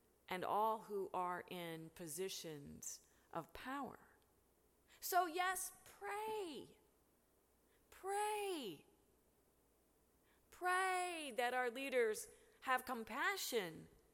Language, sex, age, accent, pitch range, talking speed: English, female, 40-59, American, 220-360 Hz, 75 wpm